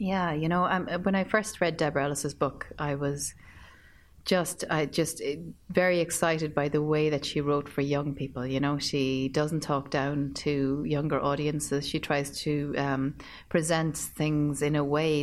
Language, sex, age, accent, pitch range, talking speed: English, female, 30-49, Irish, 140-155 Hz, 180 wpm